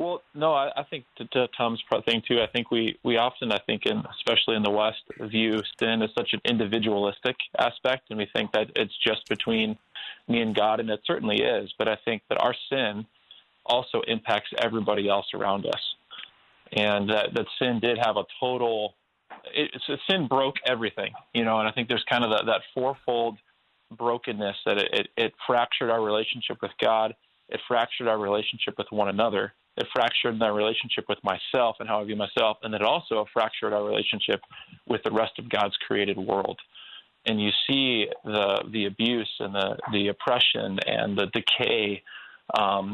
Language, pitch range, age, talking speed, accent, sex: English, 105-120 Hz, 20-39, 185 wpm, American, male